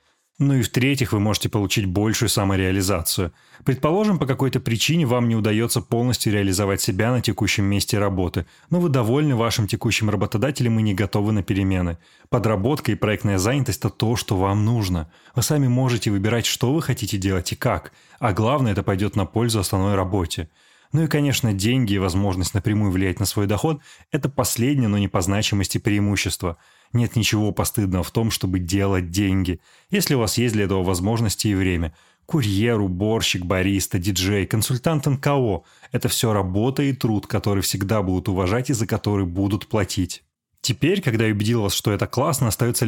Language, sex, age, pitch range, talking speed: Russian, male, 20-39, 100-120 Hz, 175 wpm